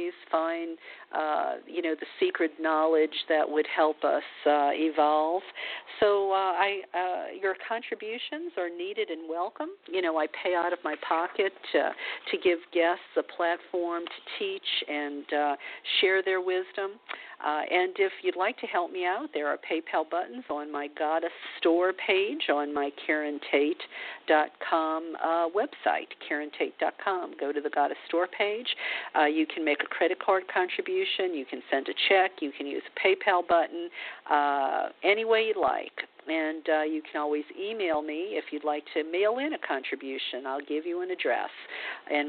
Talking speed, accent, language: 170 wpm, American, English